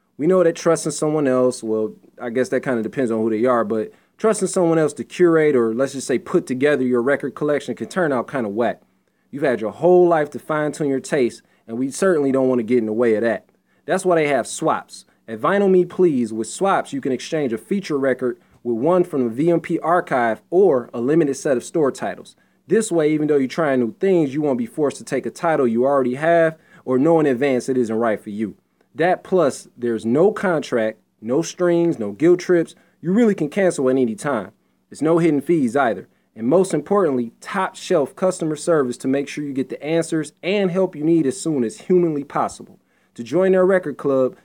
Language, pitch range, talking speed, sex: English, 130-170 Hz, 225 wpm, male